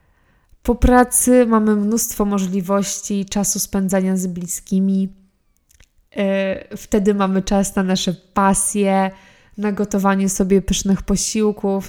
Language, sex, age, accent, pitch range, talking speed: Polish, female, 20-39, native, 190-215 Hz, 100 wpm